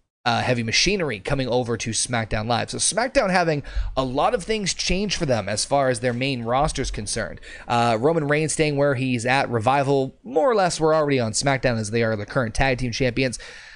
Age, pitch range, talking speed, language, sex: 30-49, 115-150 Hz, 215 wpm, English, male